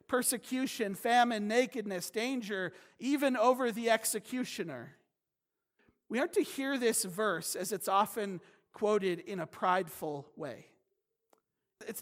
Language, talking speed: English, 115 wpm